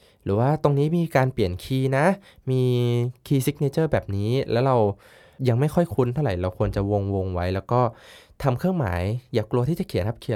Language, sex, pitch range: Thai, male, 100-130 Hz